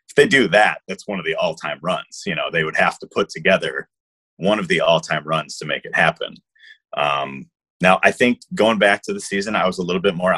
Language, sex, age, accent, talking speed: English, male, 30-49, American, 245 wpm